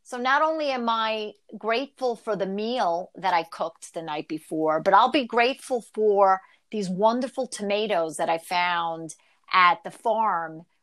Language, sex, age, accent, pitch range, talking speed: English, female, 50-69, American, 190-250 Hz, 160 wpm